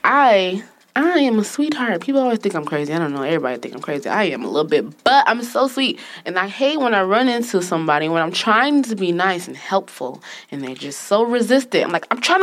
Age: 20-39